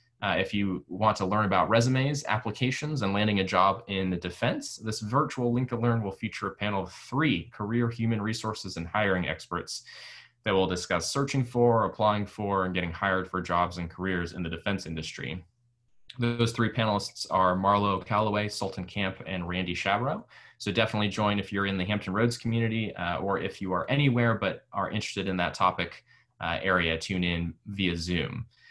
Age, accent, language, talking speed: 20-39, American, English, 190 wpm